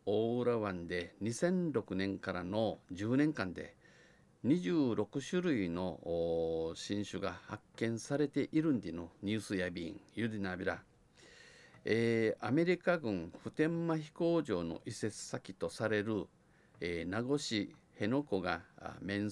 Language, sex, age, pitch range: Japanese, male, 50-69, 95-130 Hz